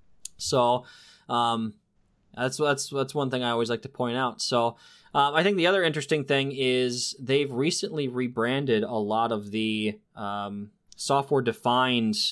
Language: English